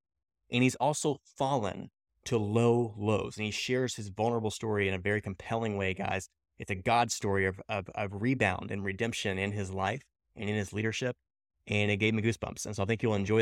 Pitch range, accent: 100-125 Hz, American